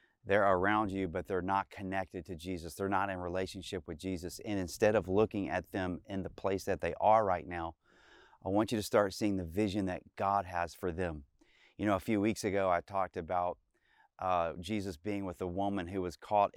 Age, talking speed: 30-49, 215 wpm